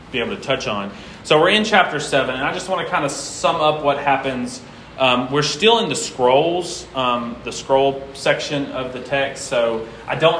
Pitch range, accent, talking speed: 115-140 Hz, American, 215 wpm